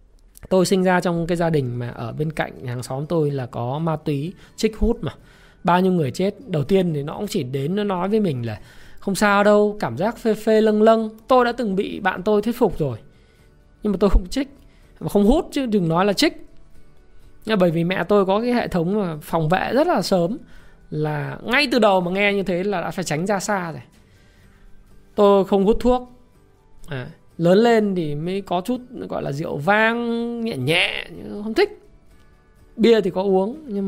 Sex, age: male, 20-39